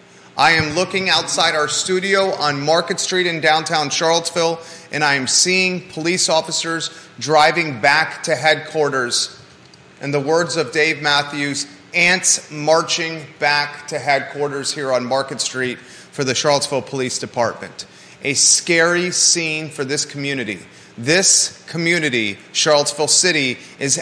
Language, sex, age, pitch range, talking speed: English, male, 30-49, 135-165 Hz, 130 wpm